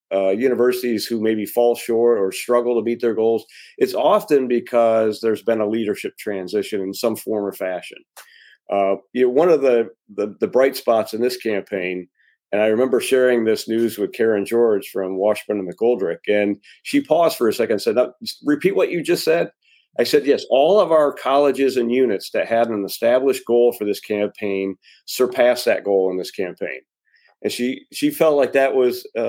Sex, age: male, 40-59